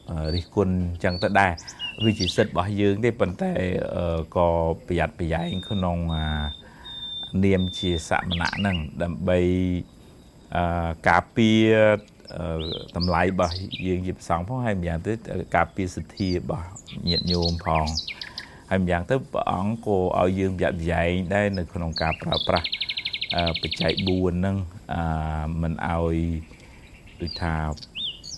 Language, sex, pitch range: English, male, 85-105 Hz